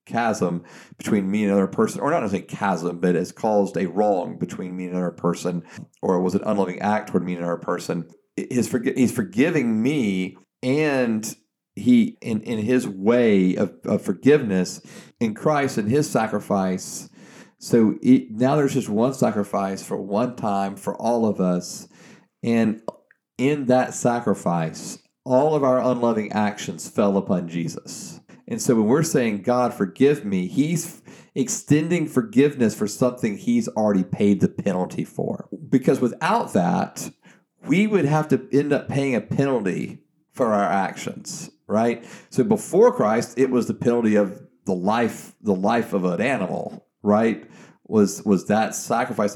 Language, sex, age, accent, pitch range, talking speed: English, male, 40-59, American, 100-135 Hz, 160 wpm